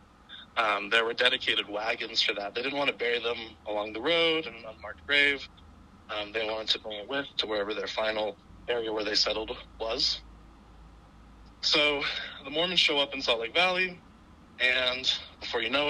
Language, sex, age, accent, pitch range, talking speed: English, male, 20-39, American, 105-145 Hz, 185 wpm